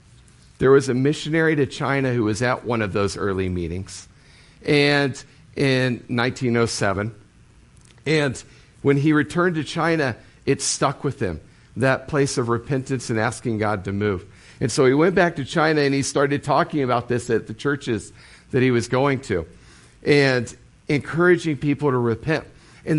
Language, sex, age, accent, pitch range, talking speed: English, male, 50-69, American, 115-150 Hz, 165 wpm